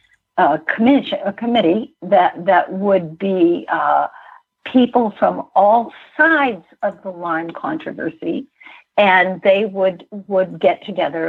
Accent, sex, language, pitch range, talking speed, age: American, female, English, 185-260 Hz, 120 wpm, 60-79